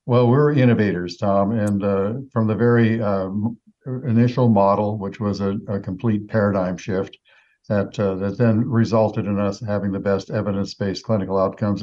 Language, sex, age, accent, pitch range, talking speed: English, male, 60-79, American, 100-115 Hz, 160 wpm